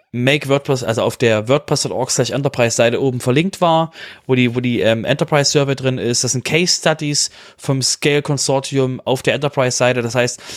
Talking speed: 175 wpm